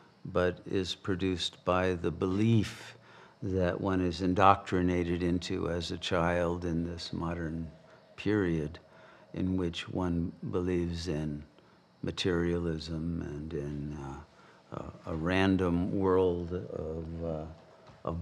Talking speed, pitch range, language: 110 wpm, 85-100 Hz, English